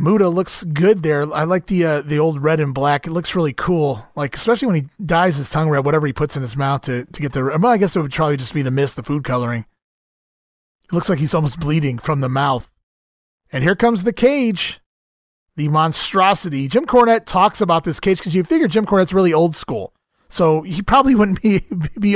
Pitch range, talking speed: 155-215 Hz, 225 wpm